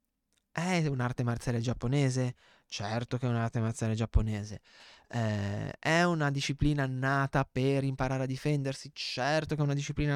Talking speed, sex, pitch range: 140 wpm, male, 125-155 Hz